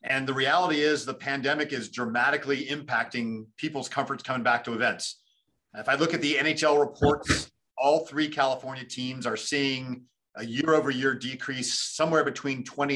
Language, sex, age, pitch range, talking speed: English, male, 40-59, 125-155 Hz, 165 wpm